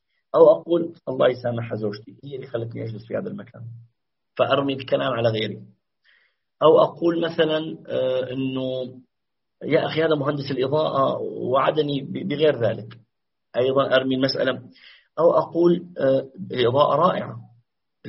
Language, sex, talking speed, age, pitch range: Arabic, male, 115 wpm, 40-59, 120-155 Hz